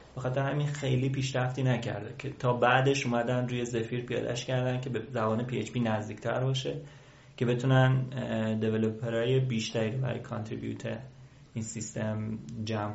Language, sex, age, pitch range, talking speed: Persian, male, 30-49, 115-130 Hz, 135 wpm